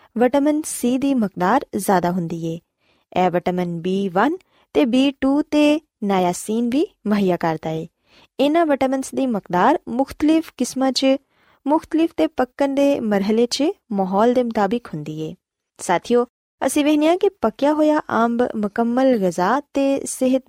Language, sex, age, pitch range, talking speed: Punjabi, female, 20-39, 185-275 Hz, 145 wpm